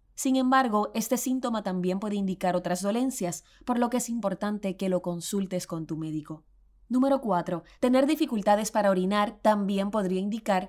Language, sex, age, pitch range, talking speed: Spanish, female, 20-39, 180-235 Hz, 165 wpm